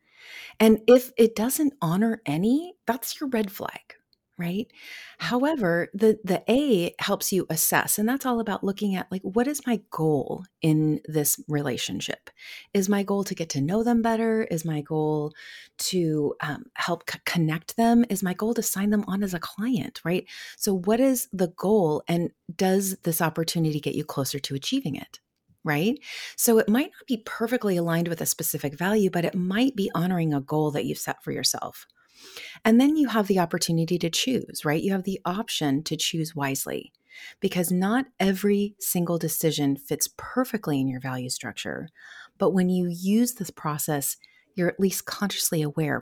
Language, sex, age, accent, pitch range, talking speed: English, female, 30-49, American, 160-225 Hz, 180 wpm